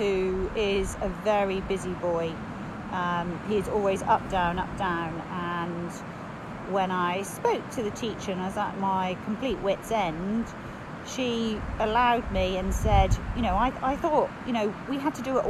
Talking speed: 175 wpm